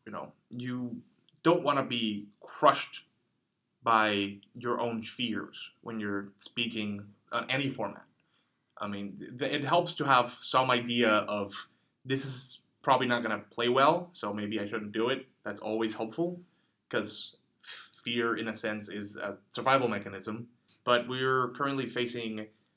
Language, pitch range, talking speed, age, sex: English, 110-135 Hz, 155 wpm, 20-39, male